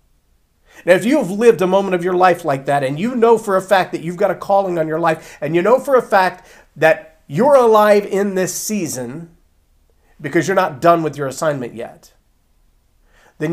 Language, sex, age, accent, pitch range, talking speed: English, male, 40-59, American, 130-185 Hz, 205 wpm